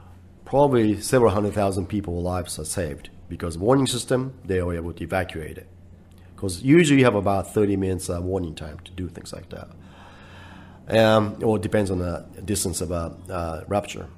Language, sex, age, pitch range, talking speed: French, male, 40-59, 90-110 Hz, 185 wpm